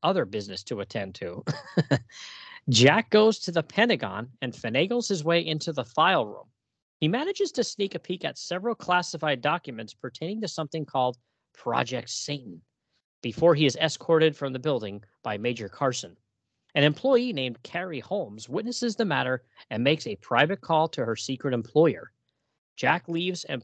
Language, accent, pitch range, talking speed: English, American, 130-180 Hz, 160 wpm